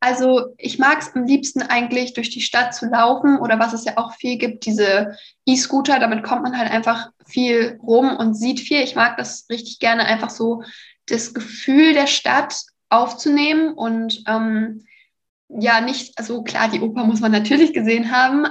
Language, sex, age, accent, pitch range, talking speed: German, female, 10-29, German, 230-255 Hz, 180 wpm